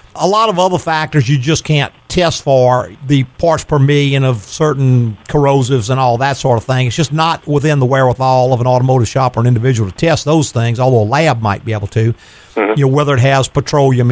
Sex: male